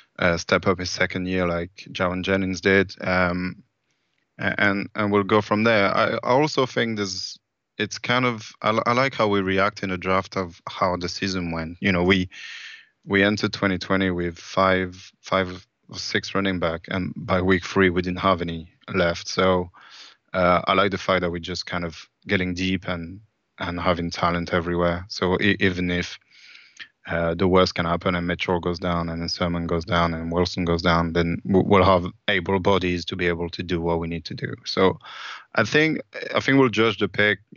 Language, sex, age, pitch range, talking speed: English, male, 20-39, 85-100 Hz, 195 wpm